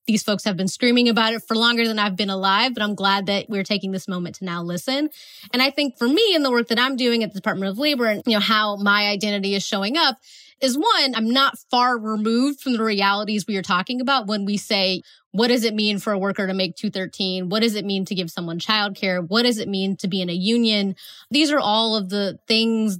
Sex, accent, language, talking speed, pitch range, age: female, American, English, 255 wpm, 195-235 Hz, 20-39